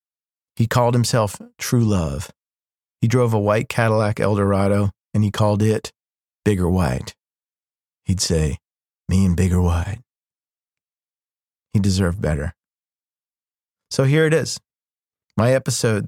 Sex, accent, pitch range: male, American, 100-125 Hz